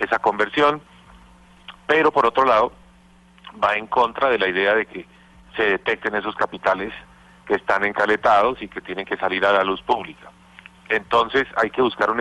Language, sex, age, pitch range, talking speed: Spanish, male, 40-59, 105-125 Hz, 170 wpm